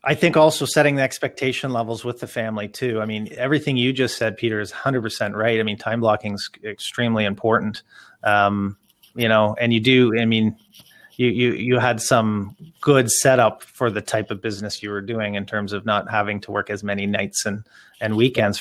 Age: 30-49